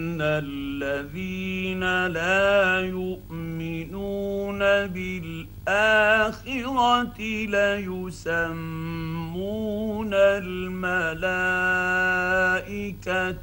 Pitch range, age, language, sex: 165-200 Hz, 50-69, Arabic, male